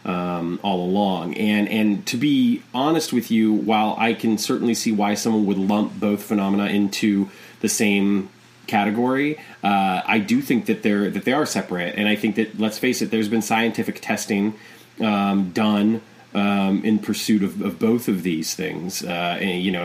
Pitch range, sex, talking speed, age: 95-105 Hz, male, 180 wpm, 30-49